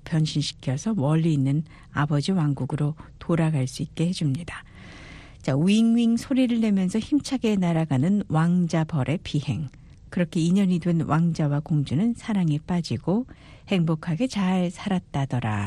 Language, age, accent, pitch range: Korean, 60-79, native, 145-200 Hz